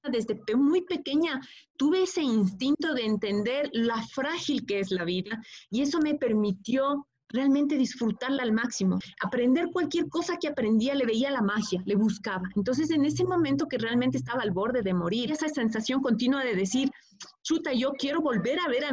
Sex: female